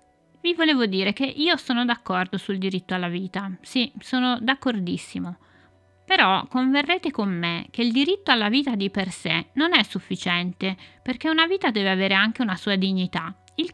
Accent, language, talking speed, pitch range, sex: native, Italian, 170 wpm, 190-255 Hz, female